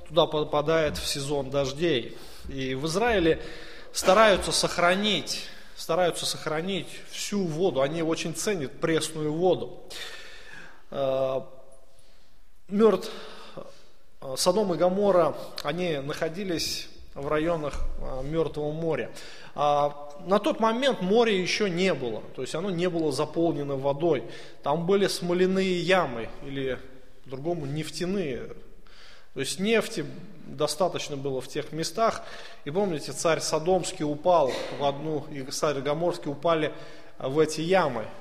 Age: 20-39